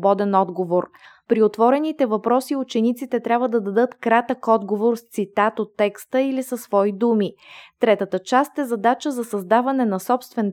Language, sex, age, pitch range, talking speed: Bulgarian, female, 20-39, 200-240 Hz, 150 wpm